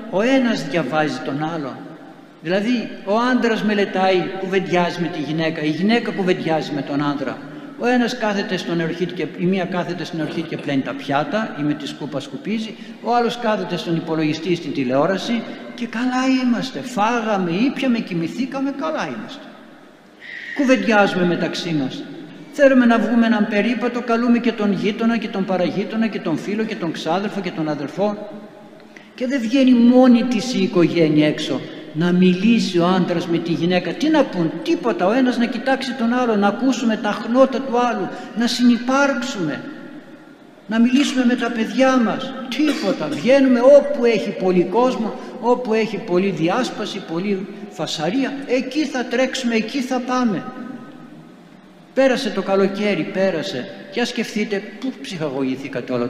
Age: 60-79